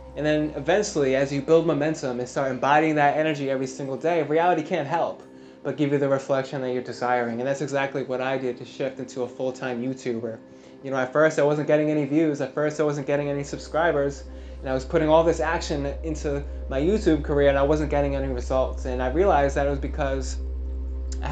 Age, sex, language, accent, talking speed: 20-39, male, English, American, 220 wpm